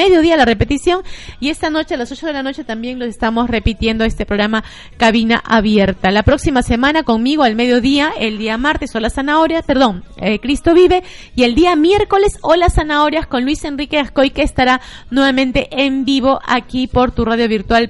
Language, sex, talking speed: Spanish, female, 190 wpm